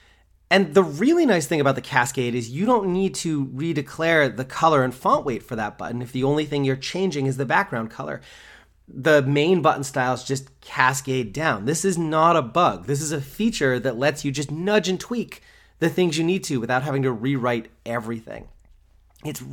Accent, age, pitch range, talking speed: American, 30-49, 120-165 Hz, 205 wpm